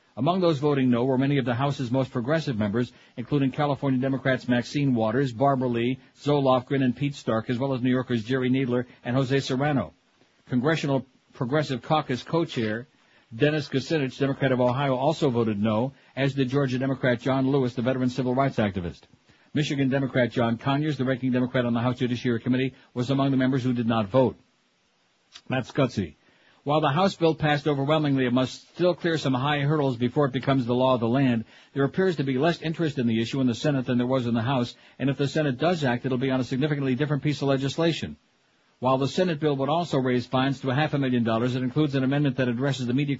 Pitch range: 125-145 Hz